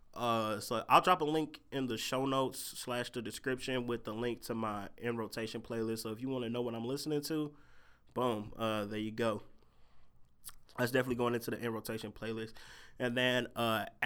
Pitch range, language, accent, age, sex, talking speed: 110-125 Hz, English, American, 20-39, male, 200 wpm